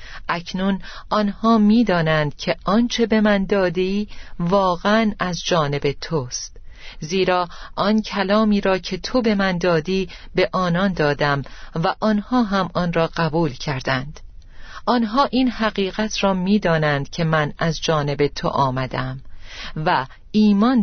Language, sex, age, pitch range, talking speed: Persian, female, 40-59, 155-210 Hz, 125 wpm